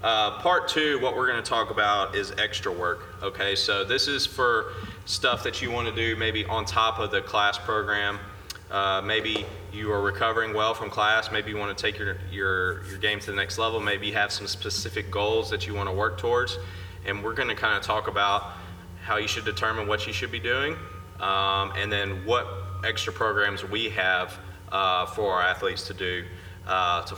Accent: American